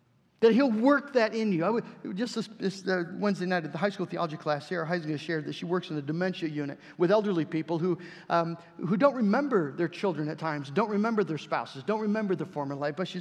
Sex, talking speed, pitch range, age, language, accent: male, 240 wpm, 155-200 Hz, 50-69, English, American